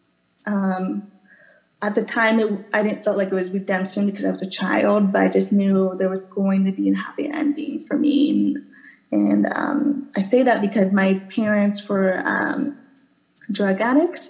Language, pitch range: English, 190-230 Hz